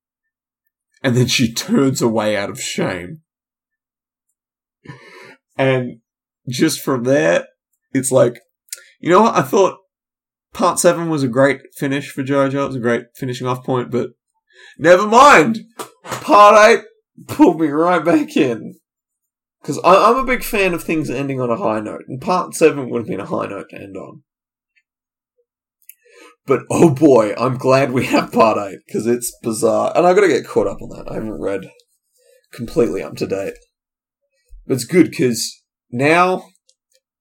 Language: English